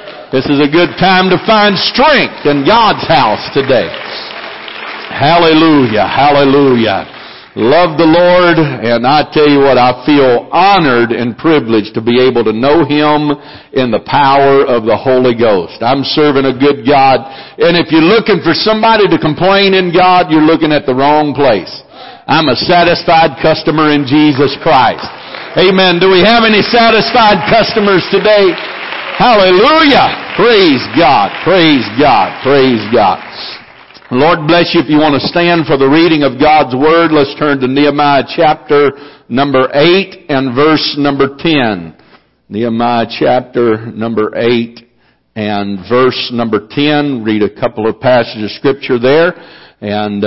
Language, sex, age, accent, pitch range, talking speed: English, male, 60-79, American, 120-165 Hz, 150 wpm